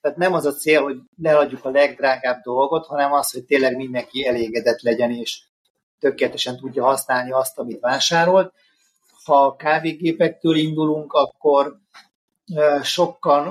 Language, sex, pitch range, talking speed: Hungarian, male, 135-160 Hz, 135 wpm